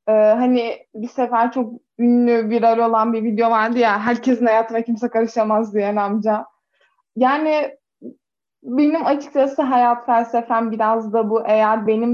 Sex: female